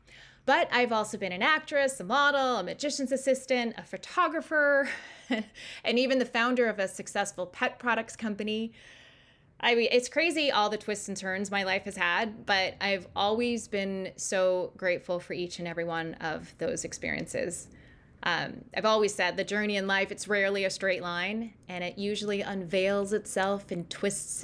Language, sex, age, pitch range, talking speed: English, female, 20-39, 190-240 Hz, 170 wpm